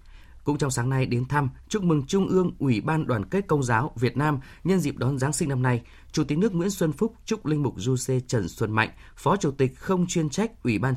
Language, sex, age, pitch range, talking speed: Vietnamese, male, 20-39, 125-170 Hz, 255 wpm